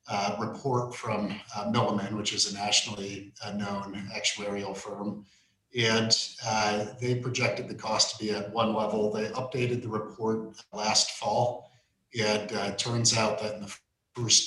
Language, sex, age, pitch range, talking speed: English, male, 40-59, 105-115 Hz, 160 wpm